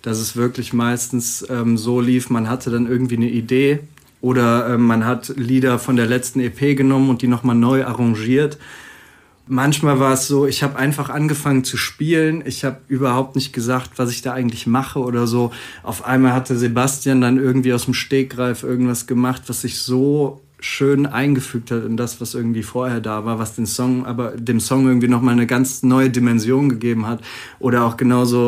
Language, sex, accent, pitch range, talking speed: German, male, German, 120-140 Hz, 190 wpm